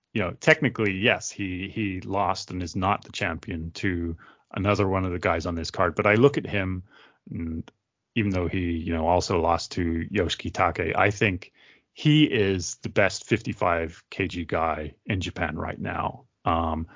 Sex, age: male, 30-49